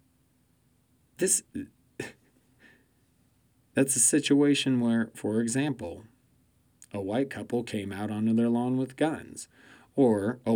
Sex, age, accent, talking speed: male, 30-49, American, 110 wpm